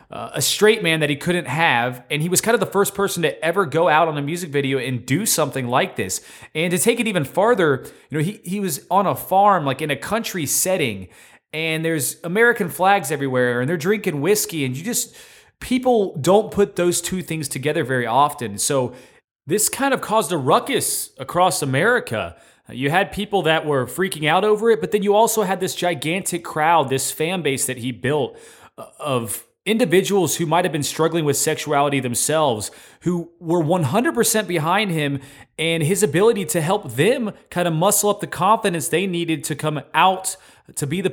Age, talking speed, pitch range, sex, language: 30-49, 200 wpm, 135-190 Hz, male, English